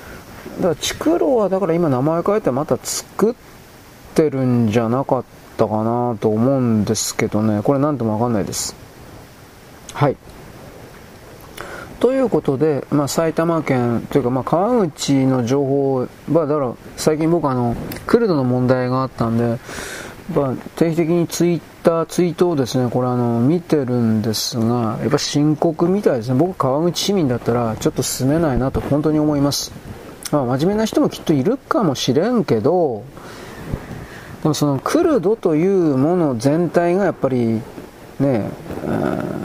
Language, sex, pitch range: Japanese, male, 125-165 Hz